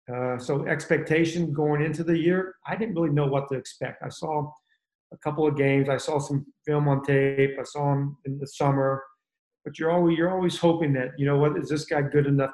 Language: Japanese